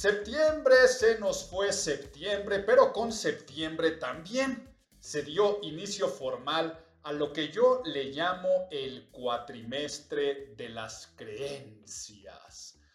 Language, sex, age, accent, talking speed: Spanish, male, 50-69, Mexican, 110 wpm